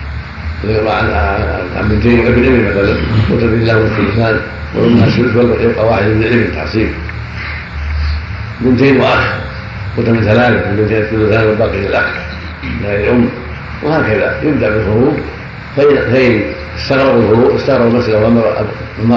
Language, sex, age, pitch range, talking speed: Arabic, male, 70-89, 80-115 Hz, 90 wpm